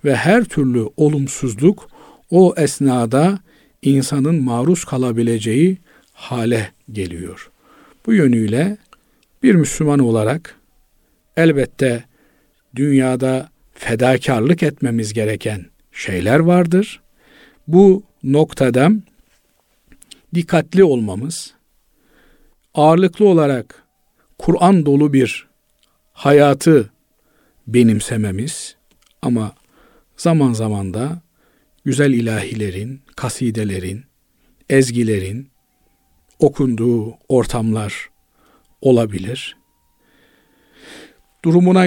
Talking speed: 65 wpm